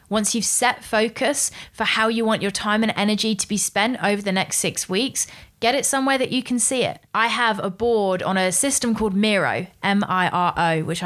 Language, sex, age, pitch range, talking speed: English, female, 20-39, 180-230 Hz, 210 wpm